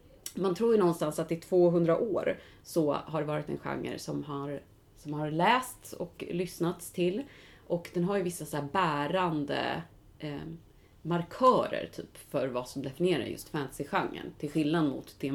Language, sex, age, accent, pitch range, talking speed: Swedish, female, 30-49, native, 150-175 Hz, 170 wpm